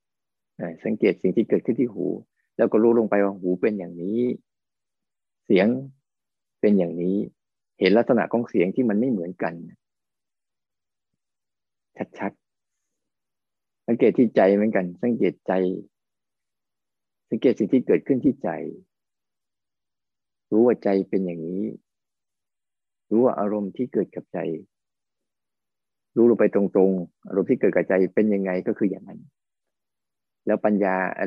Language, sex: Thai, male